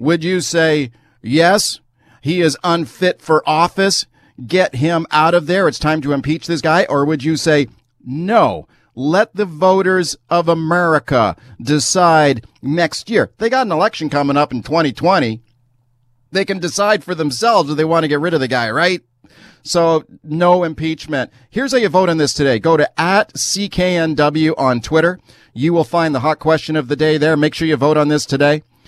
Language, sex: English, male